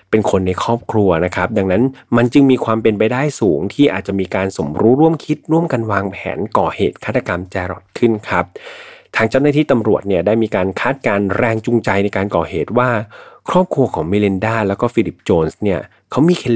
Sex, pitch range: male, 95-125 Hz